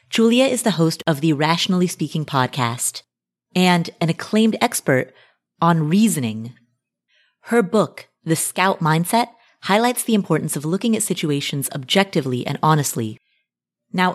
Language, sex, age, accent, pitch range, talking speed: English, female, 30-49, American, 145-200 Hz, 130 wpm